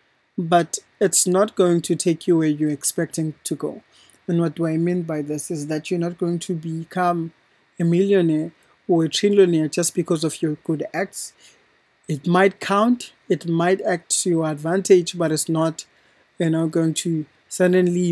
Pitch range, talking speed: 160-180 Hz, 180 wpm